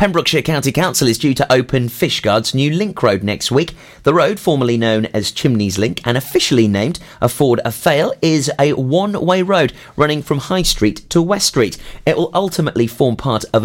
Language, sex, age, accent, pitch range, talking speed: English, male, 30-49, British, 115-165 Hz, 185 wpm